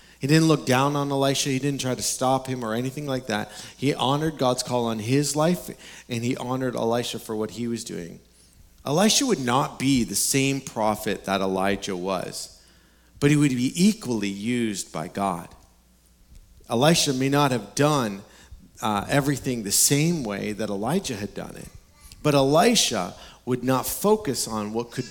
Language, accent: English, American